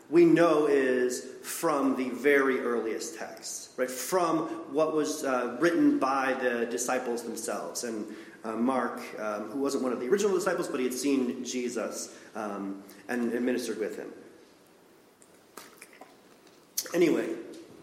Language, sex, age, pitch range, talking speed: English, male, 40-59, 135-195 Hz, 140 wpm